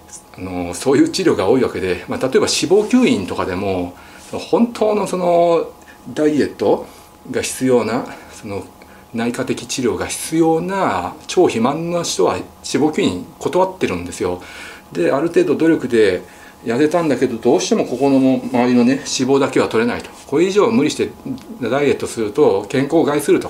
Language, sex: Japanese, male